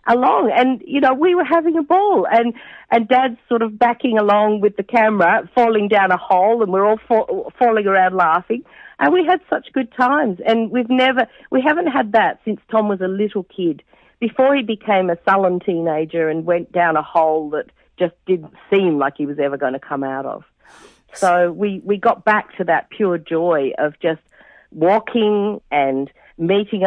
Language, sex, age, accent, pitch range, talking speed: English, female, 50-69, Australian, 170-230 Hz, 195 wpm